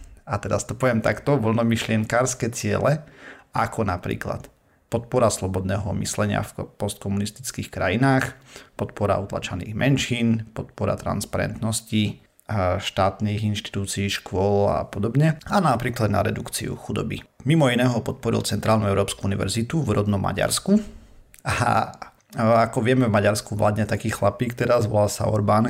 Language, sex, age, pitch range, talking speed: Slovak, male, 40-59, 100-115 Hz, 120 wpm